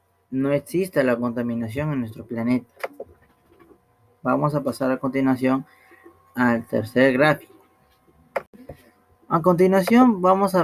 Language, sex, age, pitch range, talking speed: Spanish, male, 30-49, 115-155 Hz, 105 wpm